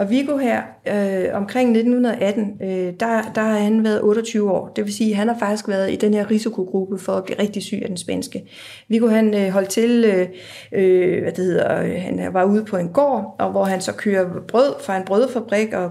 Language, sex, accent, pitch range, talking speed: Danish, female, native, 195-230 Hz, 225 wpm